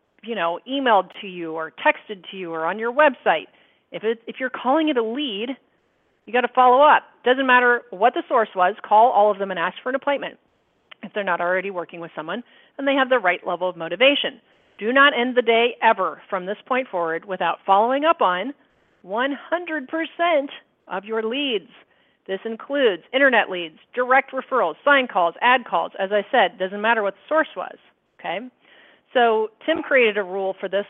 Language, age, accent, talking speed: English, 40-59, American, 195 wpm